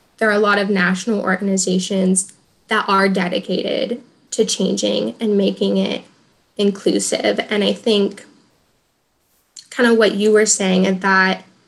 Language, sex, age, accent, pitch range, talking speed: English, female, 10-29, American, 190-220 Hz, 140 wpm